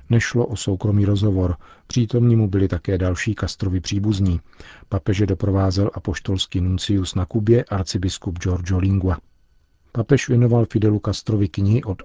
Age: 50-69